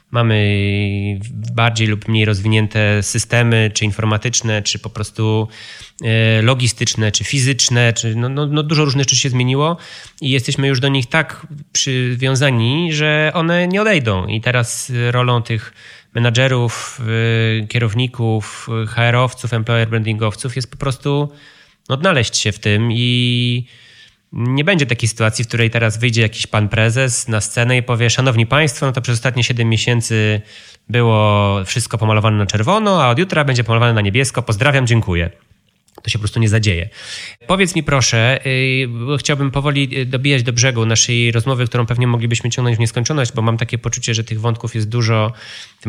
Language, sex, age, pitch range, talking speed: Polish, male, 20-39, 115-130 Hz, 155 wpm